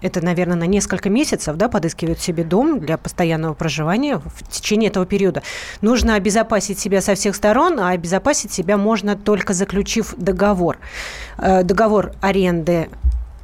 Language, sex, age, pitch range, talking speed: Russian, female, 30-49, 175-205 Hz, 140 wpm